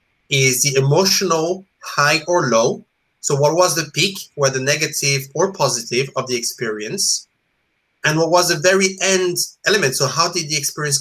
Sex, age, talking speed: male, 30-49, 165 wpm